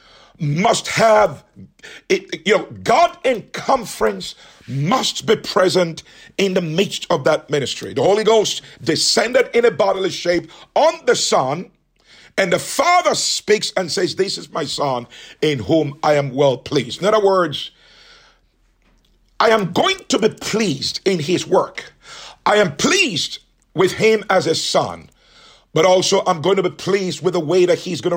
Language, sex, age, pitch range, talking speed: English, male, 50-69, 165-220 Hz, 165 wpm